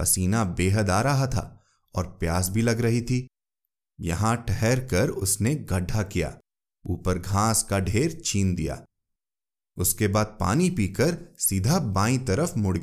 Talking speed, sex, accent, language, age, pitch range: 145 wpm, male, native, Hindi, 30-49, 90-135 Hz